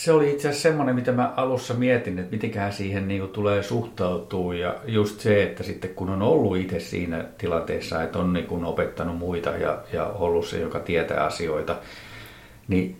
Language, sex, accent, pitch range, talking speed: Finnish, male, native, 90-115 Hz, 180 wpm